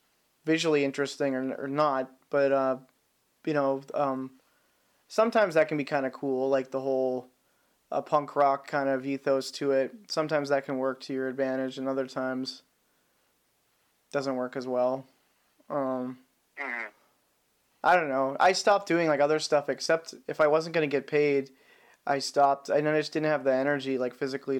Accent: American